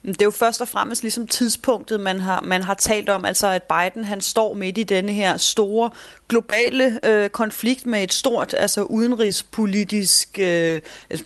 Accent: native